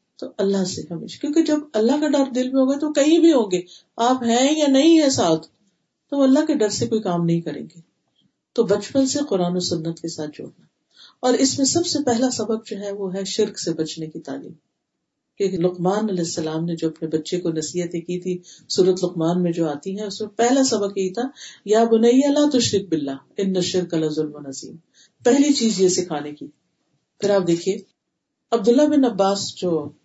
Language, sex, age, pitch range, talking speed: Urdu, female, 50-69, 160-210 Hz, 200 wpm